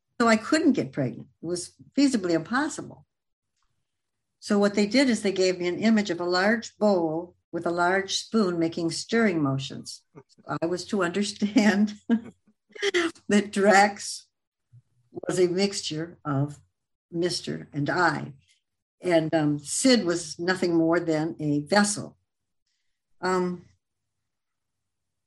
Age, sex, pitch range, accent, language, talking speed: 60-79, male, 145-200 Hz, American, English, 125 wpm